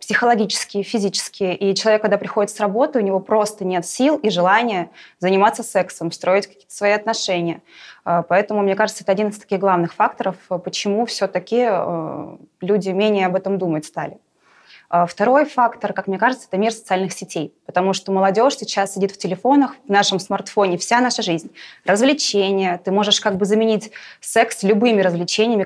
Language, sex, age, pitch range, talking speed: Russian, female, 20-39, 180-220 Hz, 160 wpm